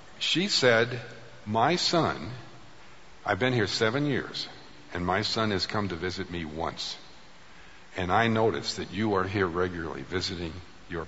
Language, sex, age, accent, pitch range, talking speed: English, male, 50-69, American, 90-120 Hz, 150 wpm